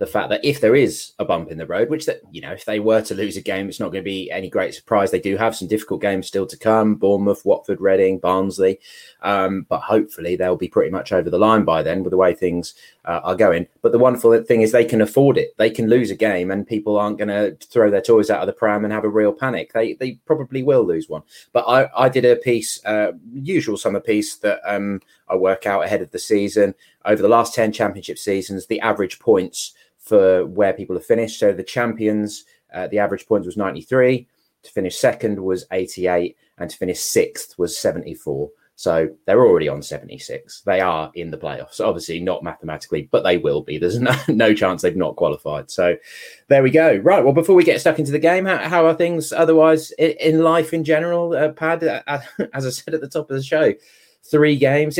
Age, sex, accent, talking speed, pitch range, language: 20-39, male, British, 230 wpm, 105-160 Hz, English